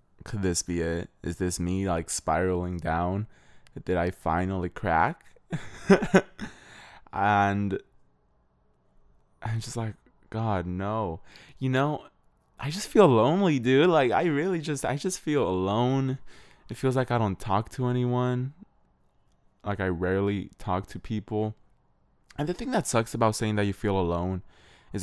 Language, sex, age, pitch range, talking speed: English, male, 20-39, 90-125 Hz, 145 wpm